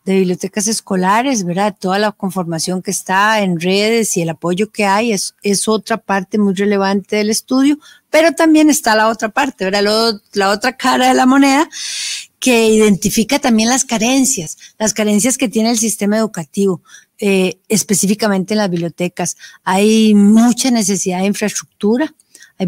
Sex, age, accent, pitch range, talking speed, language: female, 40-59, Mexican, 195-230 Hz, 160 wpm, Spanish